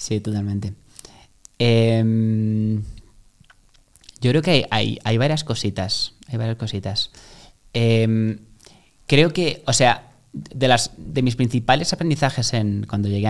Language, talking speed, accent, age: Spanish, 125 wpm, Spanish, 20-39